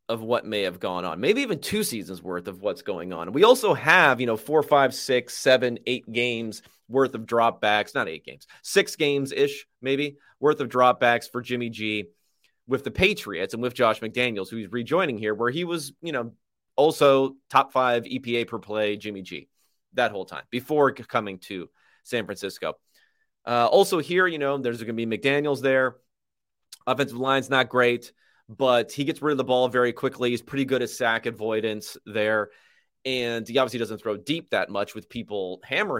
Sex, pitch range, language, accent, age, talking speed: male, 105-140 Hz, English, American, 30-49, 195 wpm